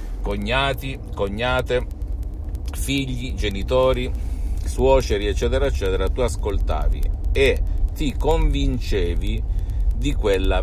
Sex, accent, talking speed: male, native, 80 wpm